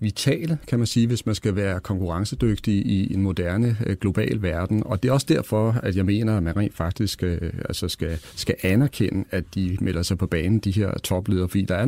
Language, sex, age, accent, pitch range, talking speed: Danish, male, 40-59, native, 95-115 Hz, 215 wpm